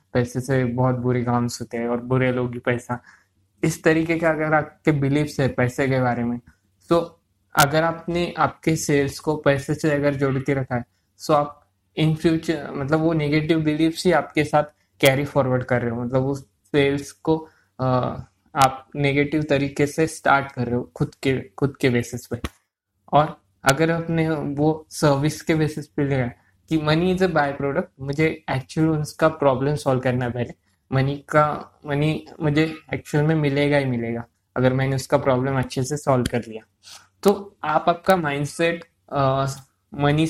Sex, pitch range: male, 125-155 Hz